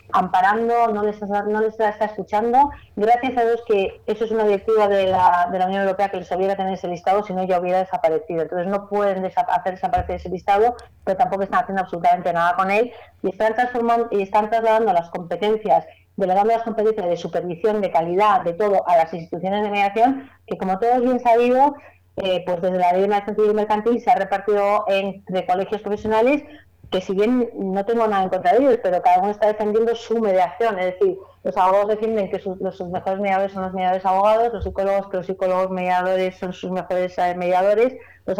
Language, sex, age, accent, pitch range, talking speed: Spanish, female, 30-49, Spanish, 185-220 Hz, 205 wpm